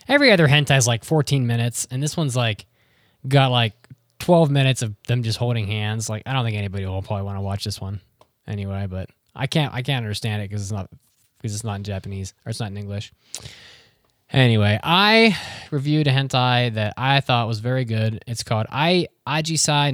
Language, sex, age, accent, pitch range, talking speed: English, male, 20-39, American, 105-125 Hz, 205 wpm